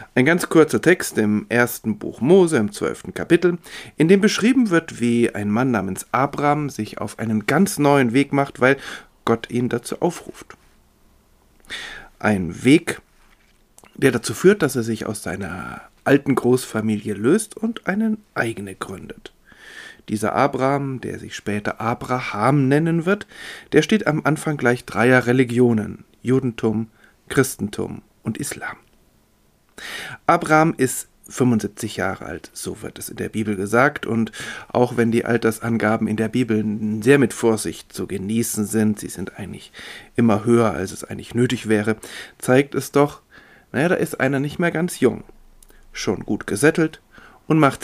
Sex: male